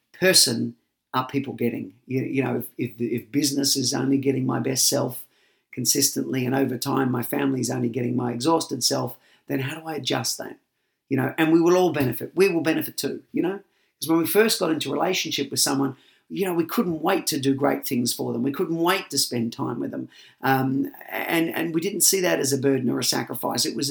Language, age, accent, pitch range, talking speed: English, 40-59, Australian, 130-150 Hz, 230 wpm